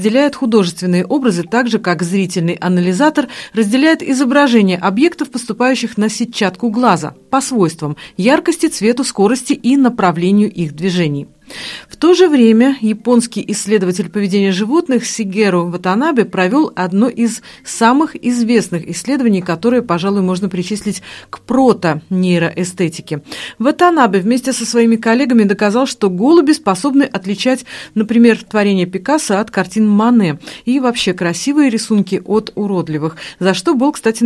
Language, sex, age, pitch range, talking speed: Russian, female, 40-59, 180-245 Hz, 130 wpm